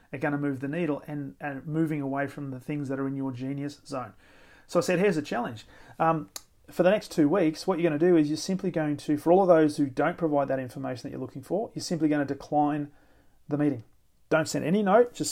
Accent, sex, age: Australian, male, 30-49